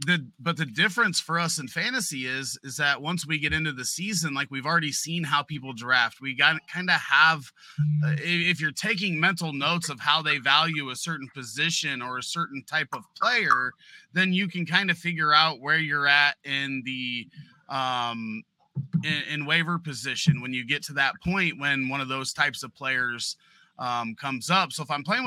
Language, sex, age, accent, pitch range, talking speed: English, male, 30-49, American, 140-175 Hz, 200 wpm